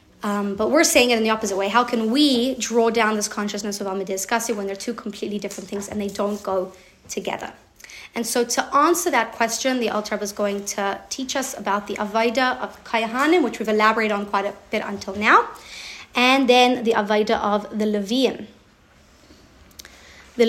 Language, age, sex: English, 30-49, female